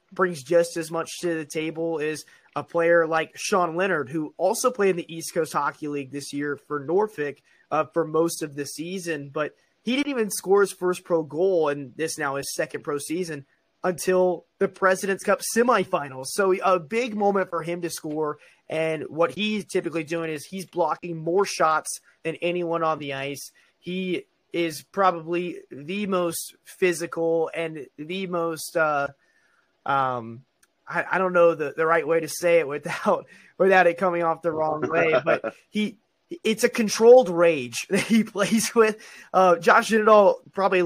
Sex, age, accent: male, 20-39, American